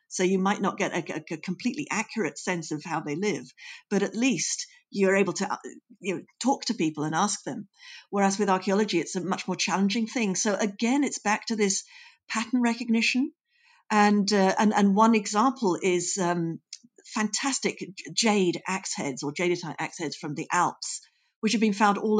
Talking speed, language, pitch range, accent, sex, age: 185 wpm, English, 190-230 Hz, British, female, 50-69